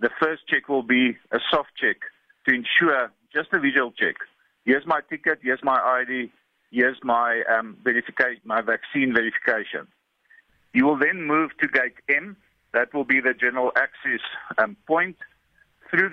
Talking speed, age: 155 wpm, 50-69